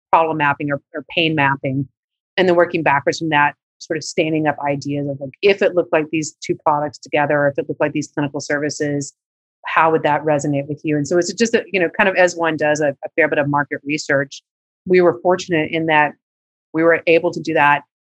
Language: English